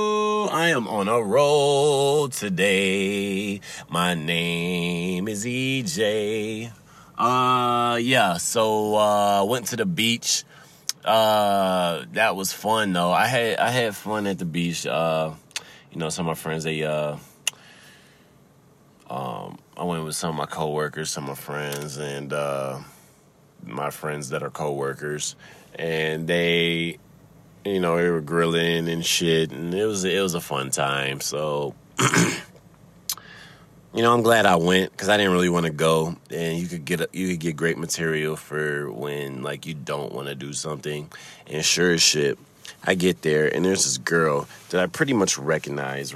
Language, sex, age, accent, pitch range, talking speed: English, male, 30-49, American, 80-105 Hz, 165 wpm